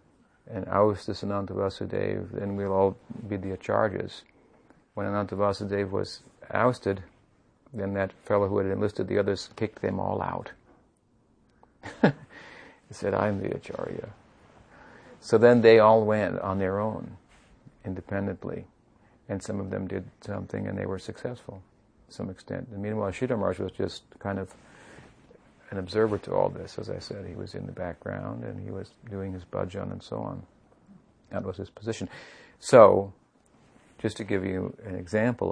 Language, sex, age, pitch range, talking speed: English, male, 50-69, 95-110 Hz, 155 wpm